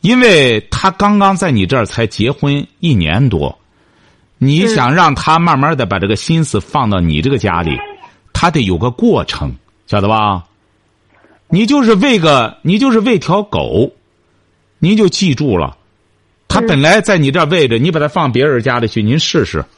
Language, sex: Chinese, male